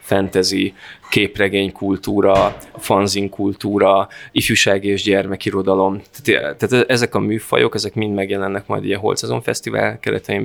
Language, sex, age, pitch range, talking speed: Hungarian, male, 20-39, 100-115 Hz, 120 wpm